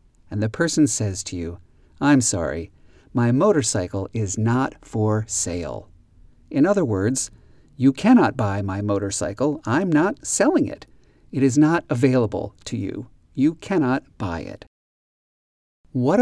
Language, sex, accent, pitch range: English, male, American, 100-150 Hz